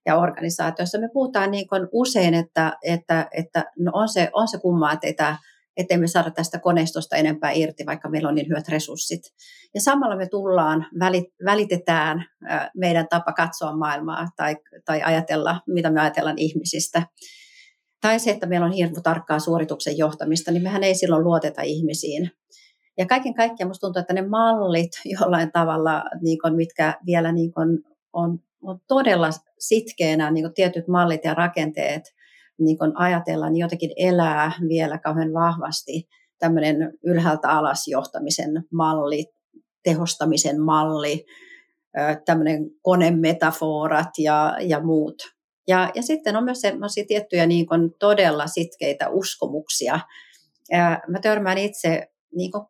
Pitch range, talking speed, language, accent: 160-185 Hz, 130 wpm, Finnish, native